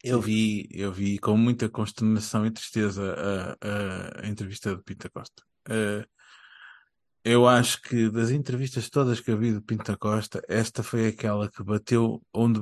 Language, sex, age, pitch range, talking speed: Portuguese, male, 20-39, 105-140 Hz, 165 wpm